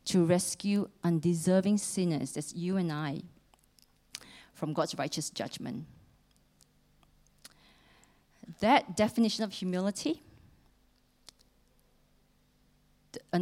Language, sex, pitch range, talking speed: English, female, 160-205 Hz, 75 wpm